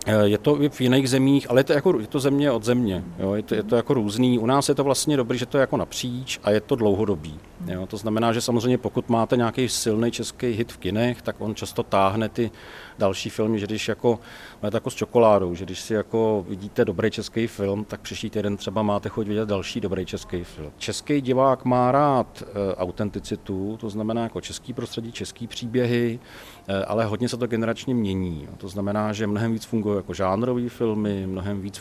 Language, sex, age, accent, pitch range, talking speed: Czech, male, 40-59, native, 100-115 Hz, 210 wpm